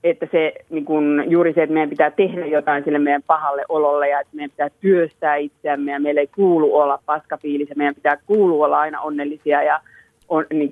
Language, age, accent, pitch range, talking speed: Finnish, 30-49, native, 150-205 Hz, 205 wpm